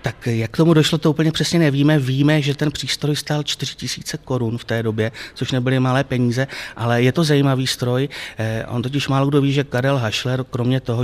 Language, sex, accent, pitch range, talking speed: Czech, male, native, 110-130 Hz, 205 wpm